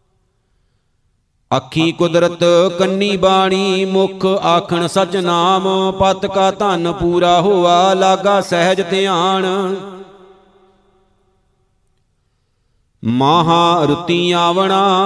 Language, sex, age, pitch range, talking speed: Punjabi, male, 50-69, 170-190 Hz, 70 wpm